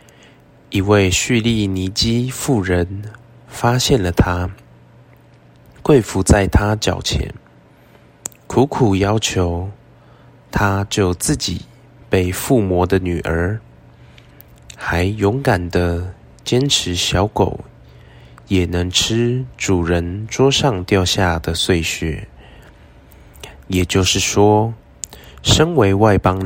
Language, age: Chinese, 20-39